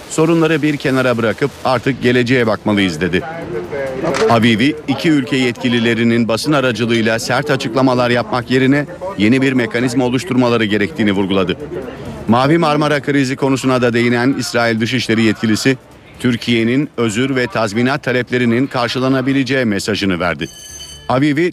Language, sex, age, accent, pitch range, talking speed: Turkish, male, 50-69, native, 110-130 Hz, 115 wpm